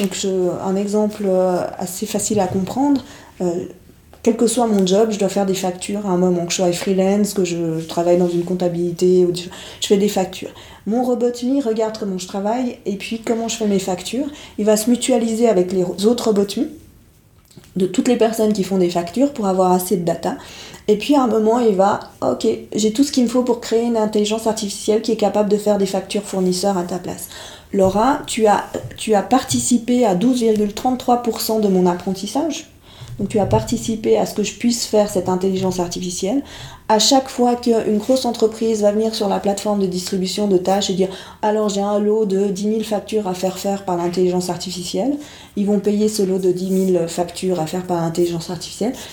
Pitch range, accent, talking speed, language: 185-225 Hz, French, 210 wpm, French